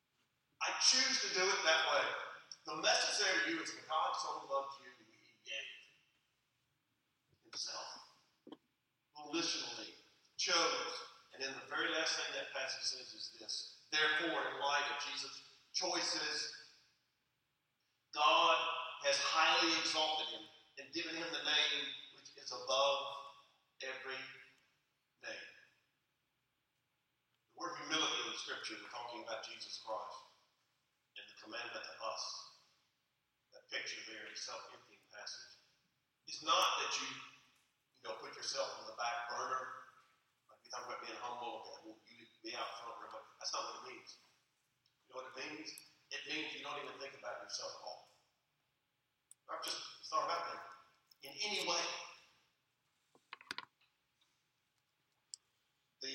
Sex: male